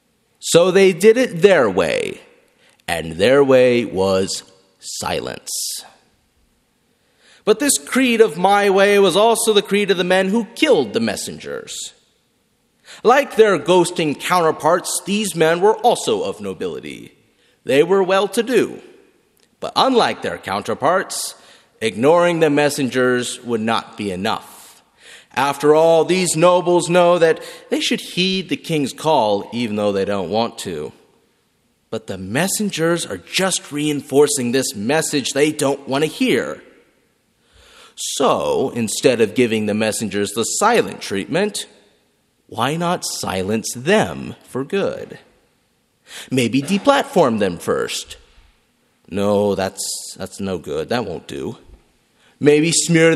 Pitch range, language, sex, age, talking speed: 130-205 Hz, English, male, 30-49, 125 wpm